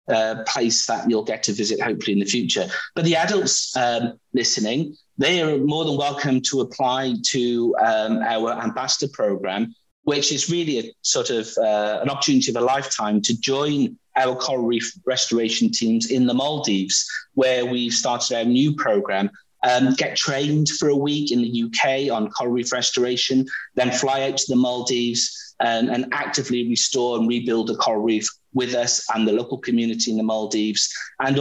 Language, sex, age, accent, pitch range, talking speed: English, male, 30-49, British, 110-135 Hz, 180 wpm